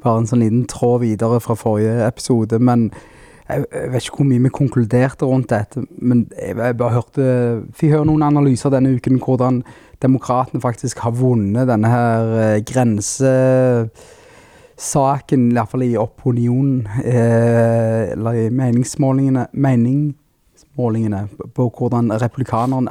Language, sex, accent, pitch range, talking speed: English, male, Norwegian, 115-130 Hz, 140 wpm